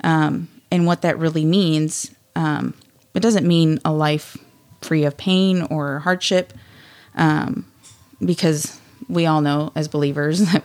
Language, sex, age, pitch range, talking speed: English, female, 30-49, 145-170 Hz, 140 wpm